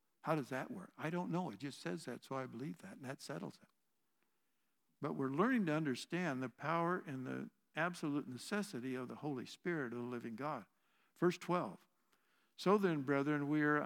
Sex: male